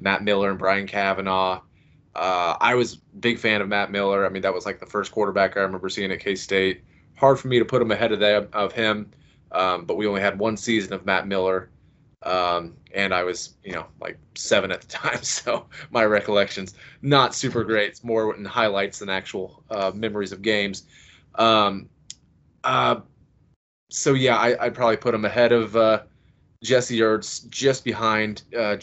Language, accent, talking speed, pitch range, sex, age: English, American, 190 wpm, 95-110 Hz, male, 20-39